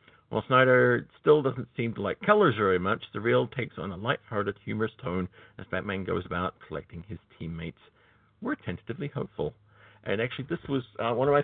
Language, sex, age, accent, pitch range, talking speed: English, male, 50-69, American, 95-125 Hz, 190 wpm